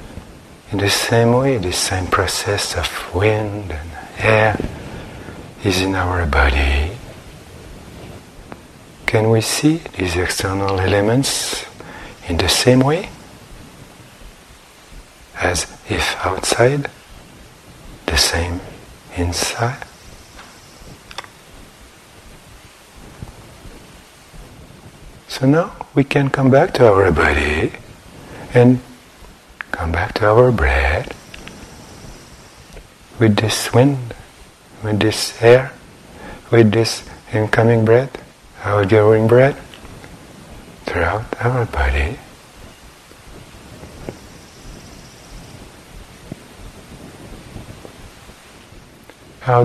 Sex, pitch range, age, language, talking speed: male, 90-120 Hz, 60-79, English, 75 wpm